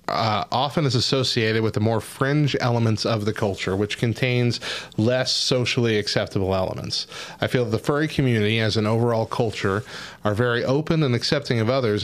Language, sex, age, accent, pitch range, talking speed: English, male, 30-49, American, 100-120 Hz, 170 wpm